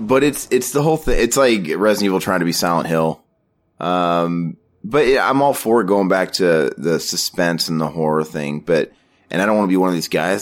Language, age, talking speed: English, 30-49, 240 wpm